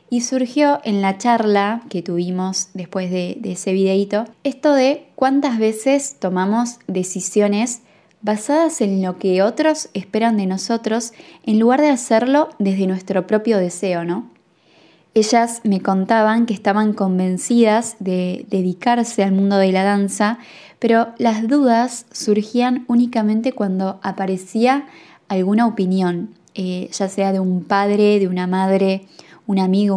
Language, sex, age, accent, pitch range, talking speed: Spanish, female, 20-39, Argentinian, 190-230 Hz, 135 wpm